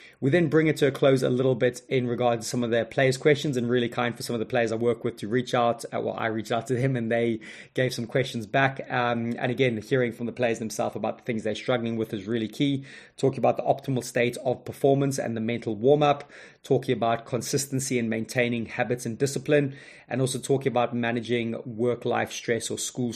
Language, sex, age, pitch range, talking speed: English, male, 20-39, 115-130 Hz, 230 wpm